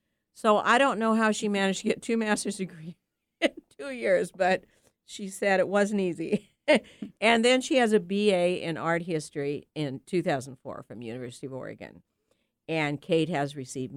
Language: English